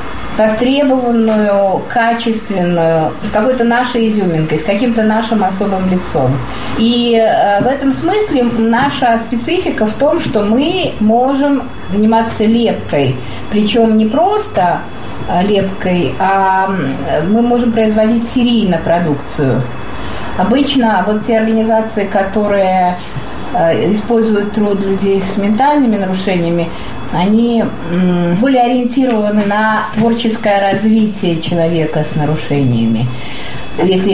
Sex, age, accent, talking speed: female, 30-49, native, 95 wpm